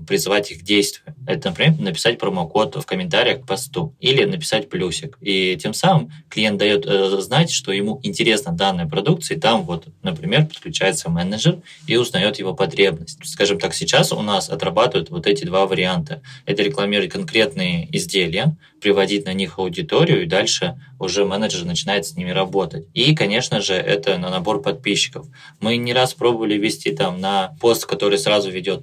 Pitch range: 100-165 Hz